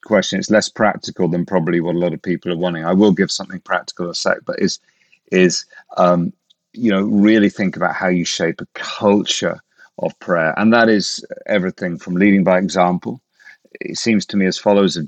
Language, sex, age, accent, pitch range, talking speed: English, male, 40-59, British, 85-100 Hz, 205 wpm